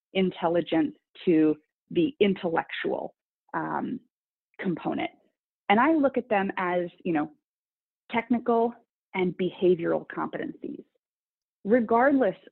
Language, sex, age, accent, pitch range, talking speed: English, female, 30-49, American, 170-240 Hz, 90 wpm